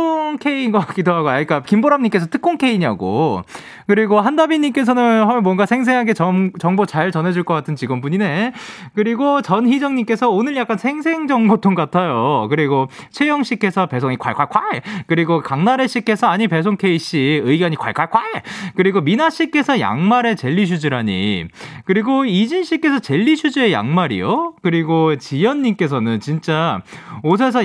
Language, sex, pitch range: Korean, male, 170-245 Hz